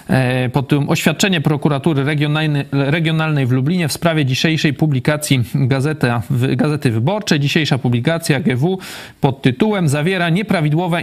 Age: 40-59